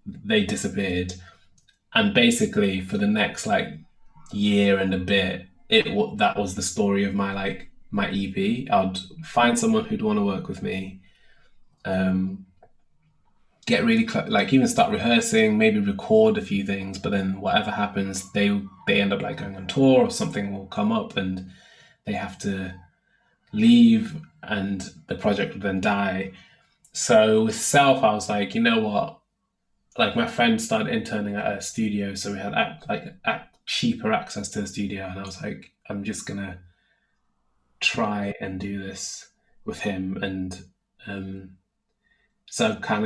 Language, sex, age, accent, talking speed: English, male, 20-39, British, 165 wpm